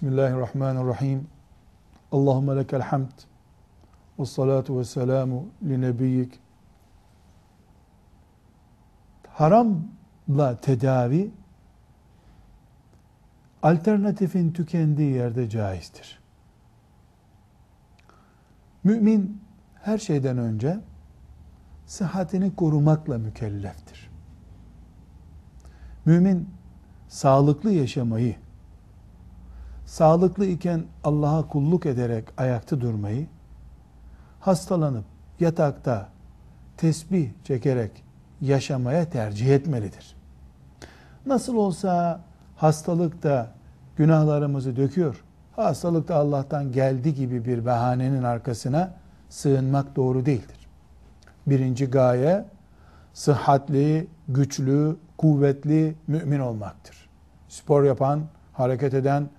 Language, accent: Turkish, native